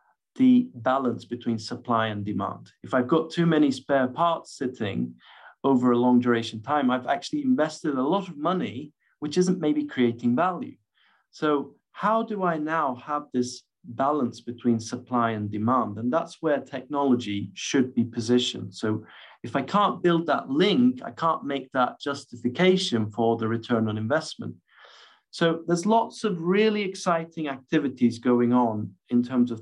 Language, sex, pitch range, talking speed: English, male, 120-170 Hz, 160 wpm